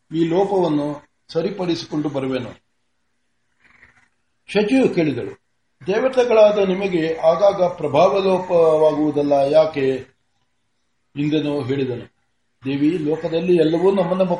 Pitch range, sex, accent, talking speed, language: 150-190 Hz, male, native, 80 wpm, Kannada